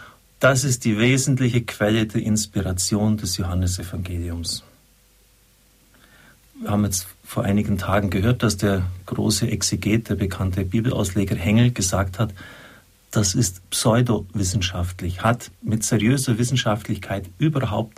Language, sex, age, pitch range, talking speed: German, male, 50-69, 100-125 Hz, 115 wpm